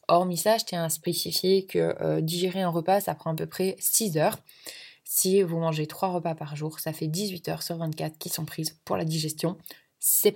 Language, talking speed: French, 215 wpm